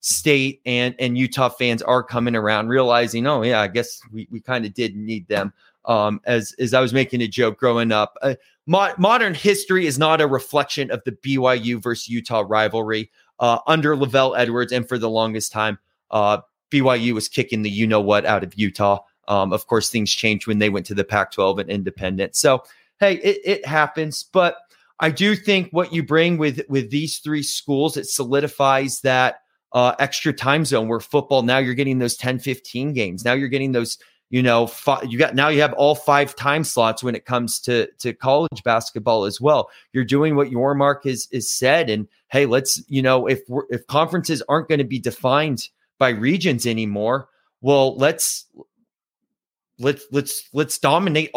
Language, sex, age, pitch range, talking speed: English, male, 30-49, 115-150 Hz, 195 wpm